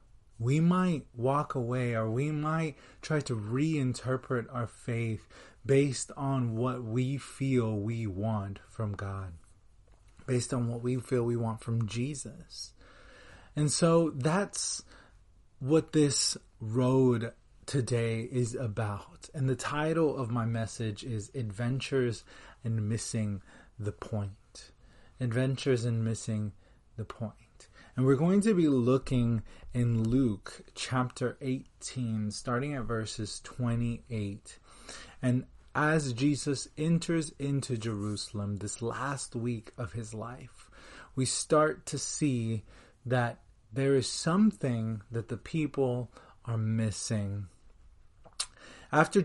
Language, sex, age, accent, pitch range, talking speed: English, male, 30-49, American, 110-135 Hz, 115 wpm